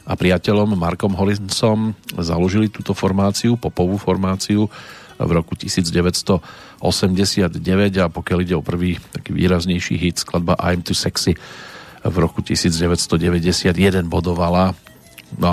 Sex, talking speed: male, 110 wpm